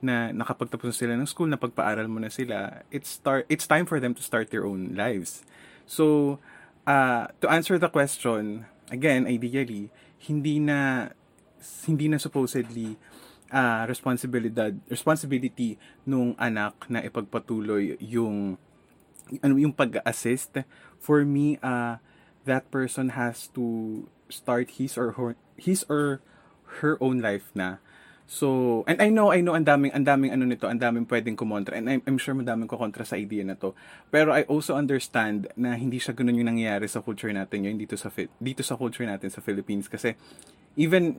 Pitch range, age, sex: 110-140 Hz, 20-39, male